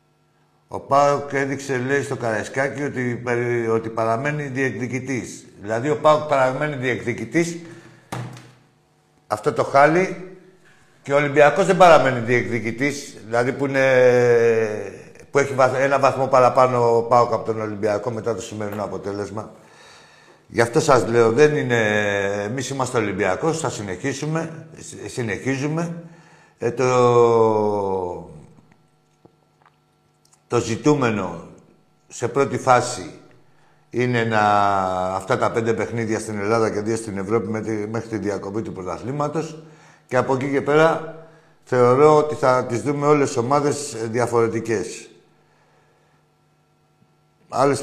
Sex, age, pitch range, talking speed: male, 60-79, 110-145 Hz, 115 wpm